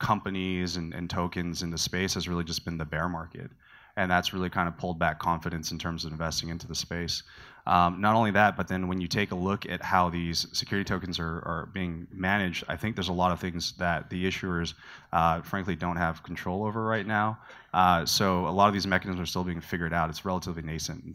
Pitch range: 85-95 Hz